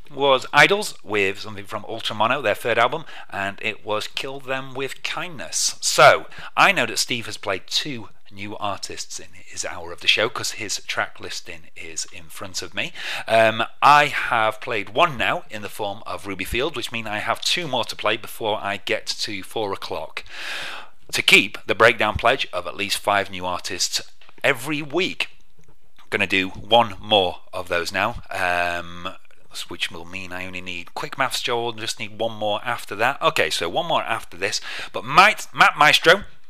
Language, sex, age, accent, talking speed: English, male, 30-49, British, 190 wpm